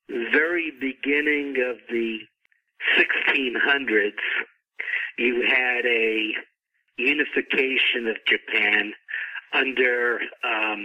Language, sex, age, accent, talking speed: English, male, 50-69, American, 70 wpm